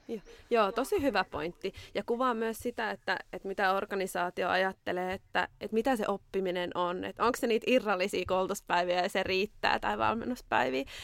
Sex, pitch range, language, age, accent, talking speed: female, 190-250 Hz, Finnish, 20-39, native, 170 wpm